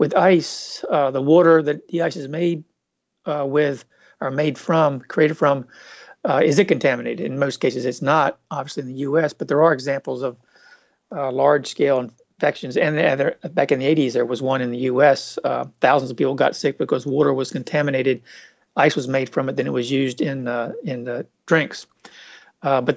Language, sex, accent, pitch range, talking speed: English, male, American, 130-150 Hz, 200 wpm